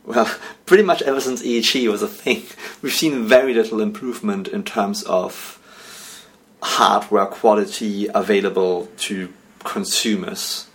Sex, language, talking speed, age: male, English, 125 wpm, 30-49